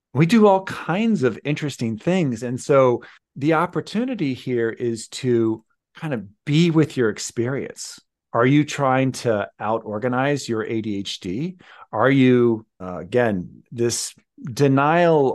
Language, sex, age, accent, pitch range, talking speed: English, male, 40-59, American, 120-170 Hz, 135 wpm